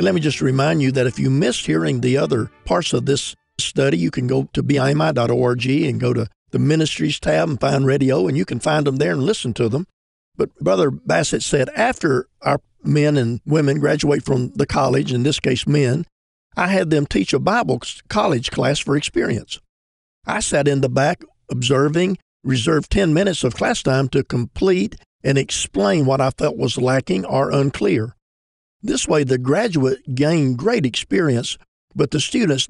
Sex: male